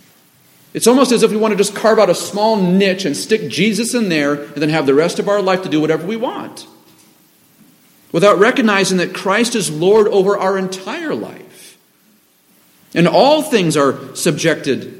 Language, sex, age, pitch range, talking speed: English, male, 40-59, 155-210 Hz, 185 wpm